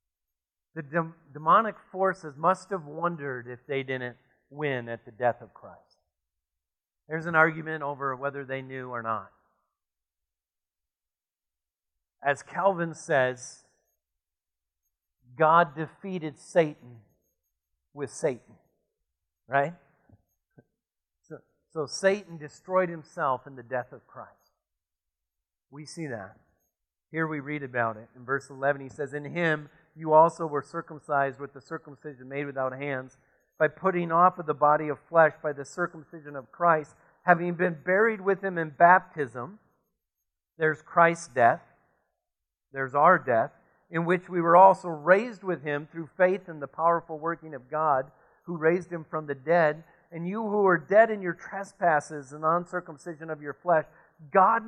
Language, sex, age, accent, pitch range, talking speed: English, male, 50-69, American, 125-170 Hz, 145 wpm